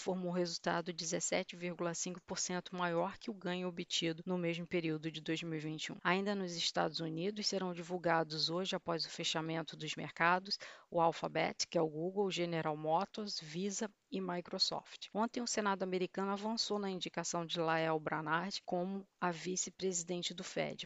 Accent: Brazilian